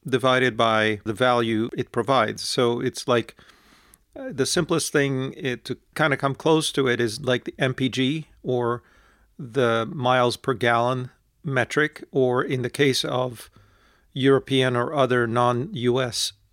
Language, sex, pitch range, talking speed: English, male, 120-140 Hz, 140 wpm